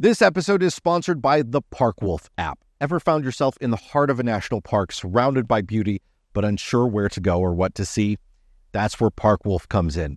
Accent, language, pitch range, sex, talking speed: American, English, 100-135 Hz, male, 220 wpm